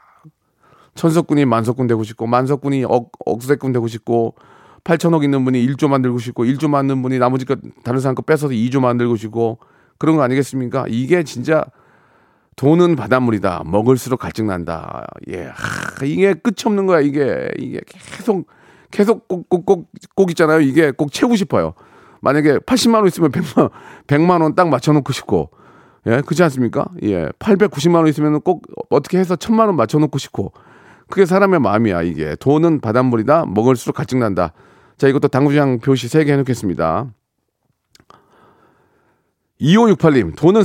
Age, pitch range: 40-59, 125-180 Hz